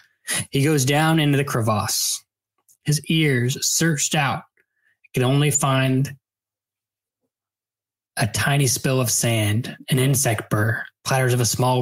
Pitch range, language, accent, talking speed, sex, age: 110-140 Hz, English, American, 130 wpm, male, 20-39